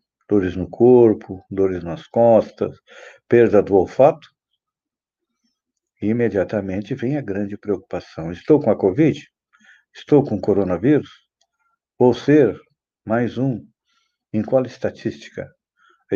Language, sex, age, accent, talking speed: Portuguese, male, 60-79, Brazilian, 115 wpm